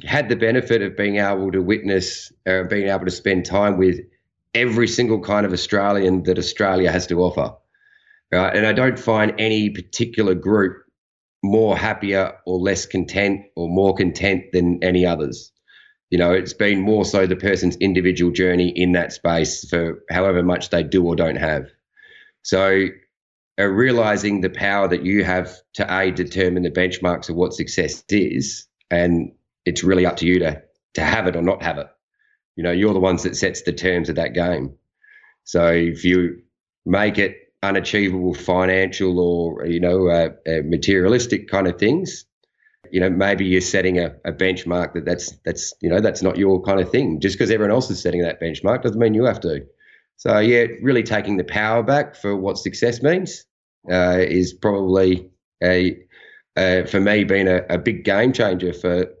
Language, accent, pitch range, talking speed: English, Australian, 90-105 Hz, 185 wpm